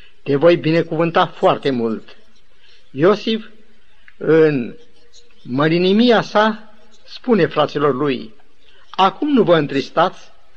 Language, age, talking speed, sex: Romanian, 50-69, 90 wpm, male